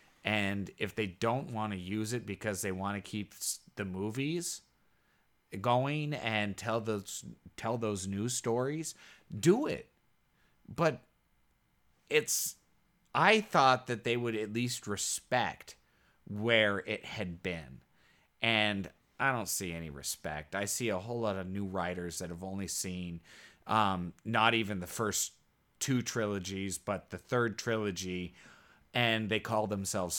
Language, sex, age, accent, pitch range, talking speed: English, male, 30-49, American, 95-115 Hz, 145 wpm